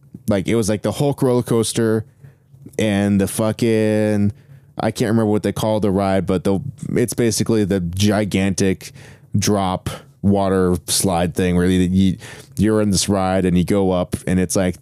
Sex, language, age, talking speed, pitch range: male, English, 20-39, 170 wpm, 95-130 Hz